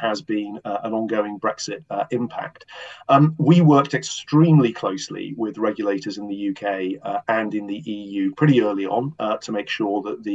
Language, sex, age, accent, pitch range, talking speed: English, male, 40-59, British, 105-140 Hz, 185 wpm